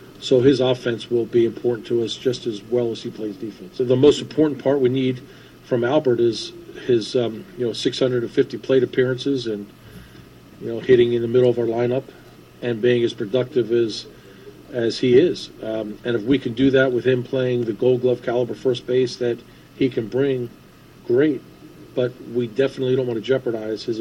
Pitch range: 115-130 Hz